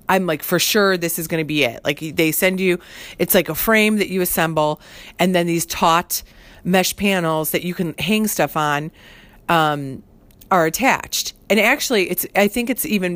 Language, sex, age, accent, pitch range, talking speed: English, female, 40-59, American, 165-215 Hz, 195 wpm